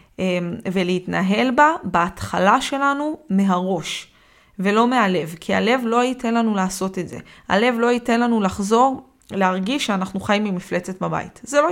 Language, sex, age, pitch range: Hebrew, female, 20-39, 195-240 Hz